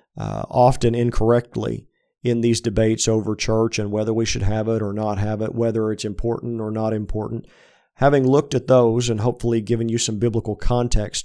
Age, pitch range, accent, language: 50-69, 110-125 Hz, American, English